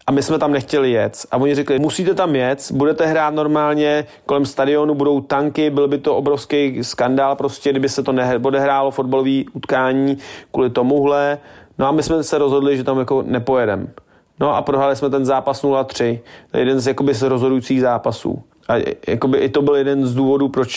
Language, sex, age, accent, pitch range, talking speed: Czech, male, 30-49, native, 130-150 Hz, 190 wpm